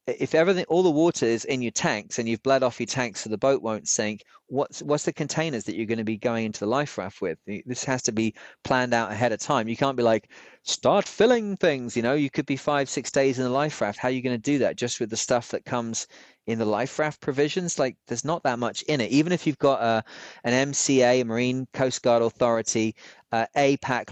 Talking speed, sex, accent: 250 wpm, male, British